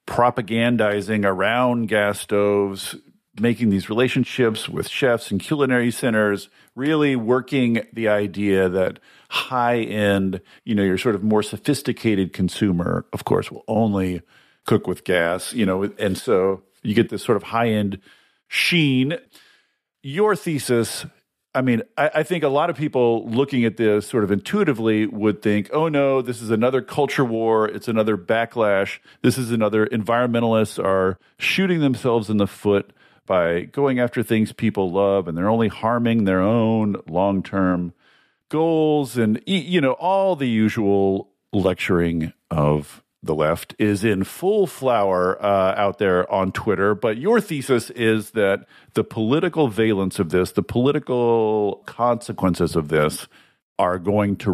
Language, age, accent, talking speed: English, 40-59, American, 150 wpm